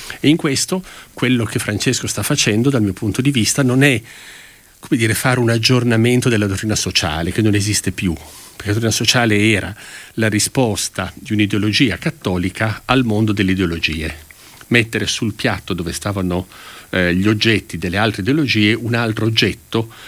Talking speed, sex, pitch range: 165 wpm, male, 90-115 Hz